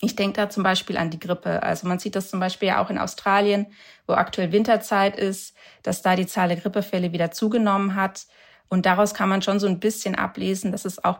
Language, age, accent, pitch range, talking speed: German, 30-49, German, 180-205 Hz, 225 wpm